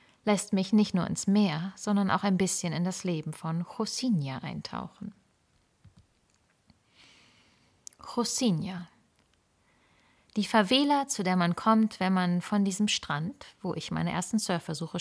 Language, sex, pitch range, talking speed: German, female, 165-200 Hz, 130 wpm